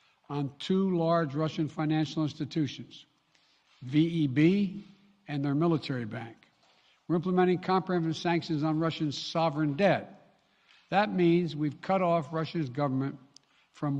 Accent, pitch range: American, 140-170 Hz